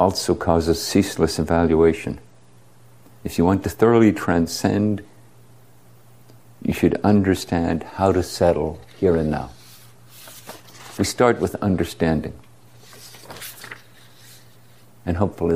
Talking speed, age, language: 95 wpm, 50-69, English